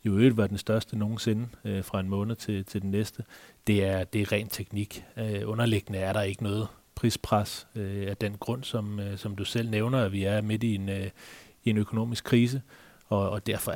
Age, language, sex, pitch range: 30-49, Danish, male, 100-120 Hz